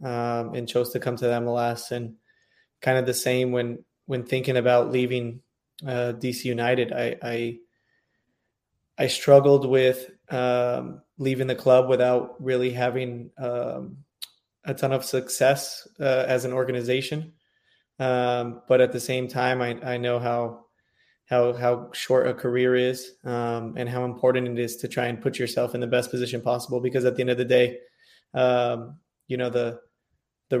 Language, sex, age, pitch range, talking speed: English, male, 20-39, 120-130 Hz, 170 wpm